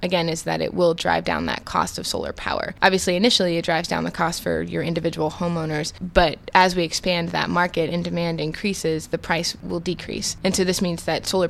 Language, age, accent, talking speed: English, 20-39, American, 220 wpm